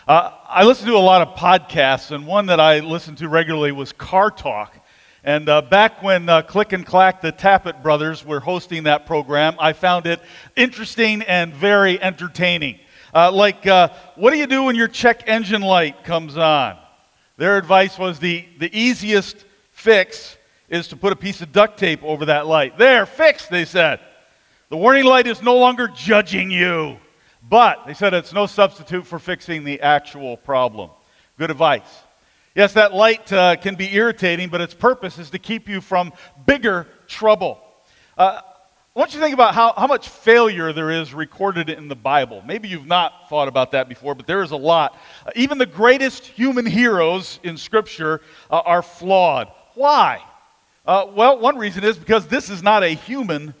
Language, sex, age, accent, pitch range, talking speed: English, male, 40-59, American, 160-215 Hz, 185 wpm